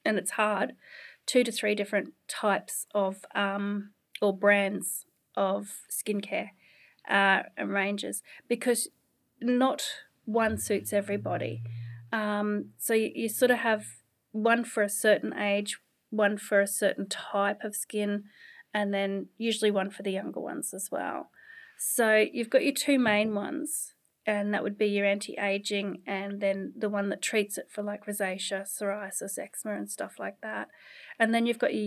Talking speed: 160 wpm